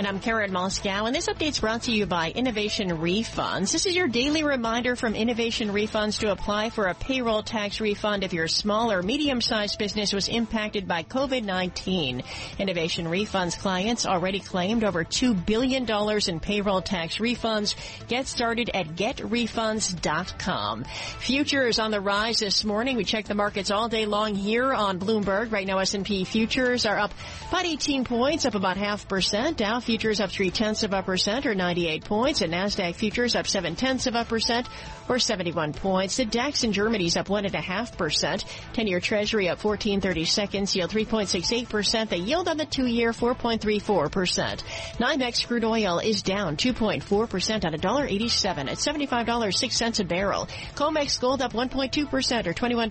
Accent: American